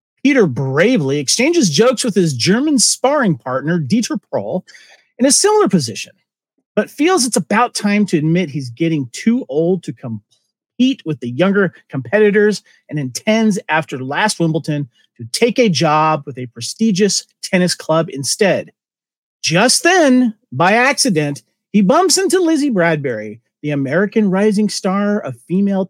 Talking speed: 145 wpm